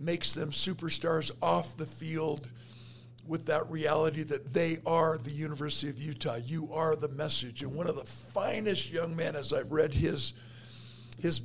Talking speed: 170 wpm